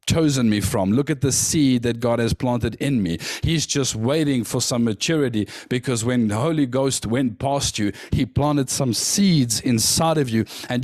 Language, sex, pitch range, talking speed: English, male, 115-160 Hz, 195 wpm